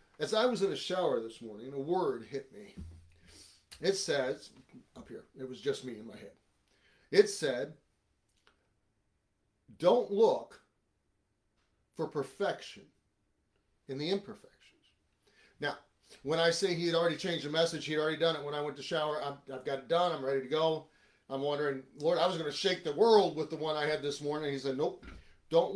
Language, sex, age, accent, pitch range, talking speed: English, male, 40-59, American, 125-170 Hz, 190 wpm